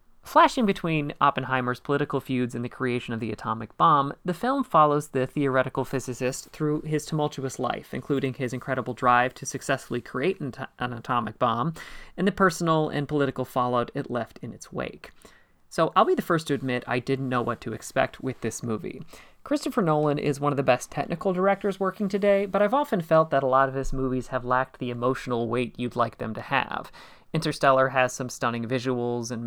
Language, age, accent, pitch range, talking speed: English, 30-49, American, 125-165 Hz, 195 wpm